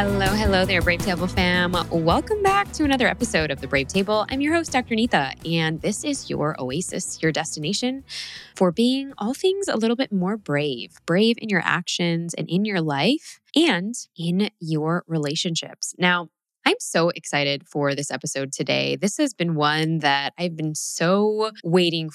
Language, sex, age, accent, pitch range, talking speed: English, female, 10-29, American, 155-195 Hz, 175 wpm